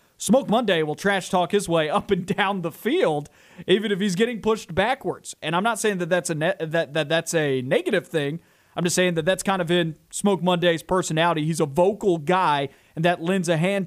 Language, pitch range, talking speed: English, 155-185 Hz, 210 wpm